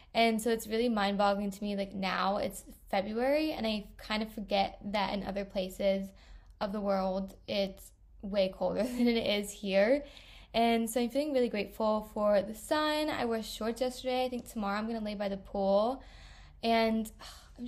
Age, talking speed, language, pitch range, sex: 20-39, 185 wpm, English, 200-240 Hz, female